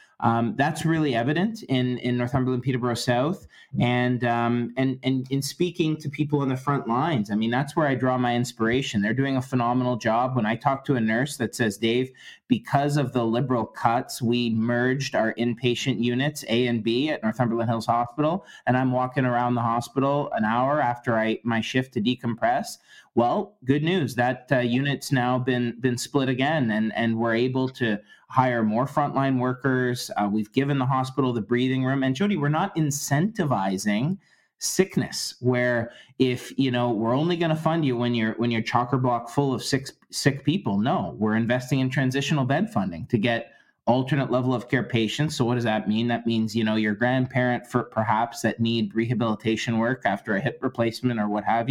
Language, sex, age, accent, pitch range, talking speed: English, male, 30-49, American, 120-140 Hz, 195 wpm